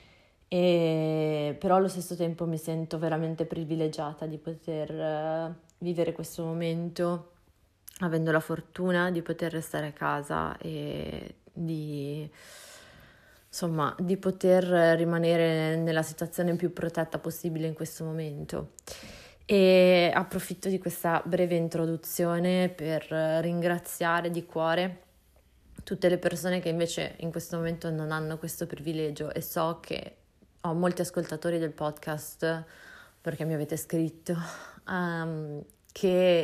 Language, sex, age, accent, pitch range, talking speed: Italian, female, 20-39, native, 155-175 Hz, 115 wpm